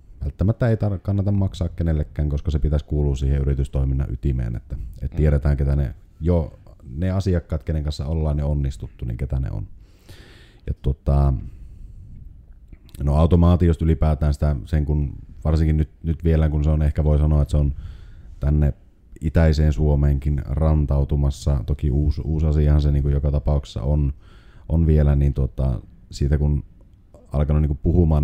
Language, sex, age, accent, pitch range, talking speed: Finnish, male, 30-49, native, 70-80 Hz, 155 wpm